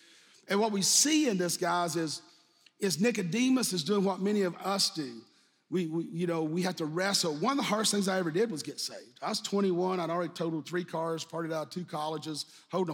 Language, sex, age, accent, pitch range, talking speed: English, male, 40-59, American, 160-200 Hz, 230 wpm